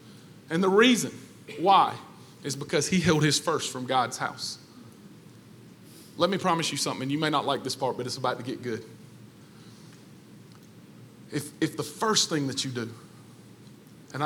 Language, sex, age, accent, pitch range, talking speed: English, male, 40-59, American, 150-185 Hz, 170 wpm